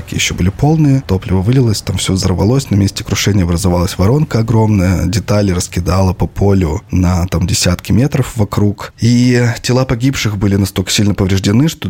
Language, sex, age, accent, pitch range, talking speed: Russian, male, 20-39, native, 95-115 Hz, 155 wpm